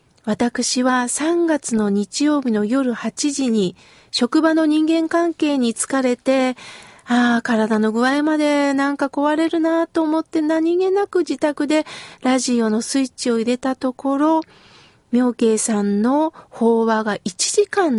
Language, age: Japanese, 40-59